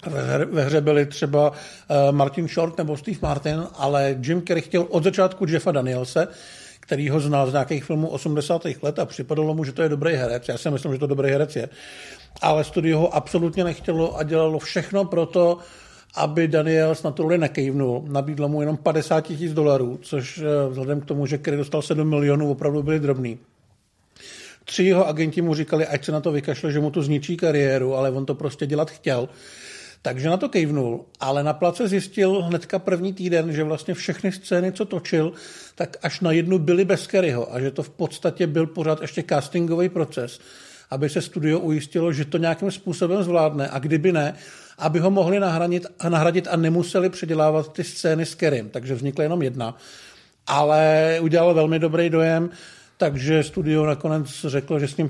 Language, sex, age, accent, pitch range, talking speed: Czech, male, 50-69, native, 145-170 Hz, 185 wpm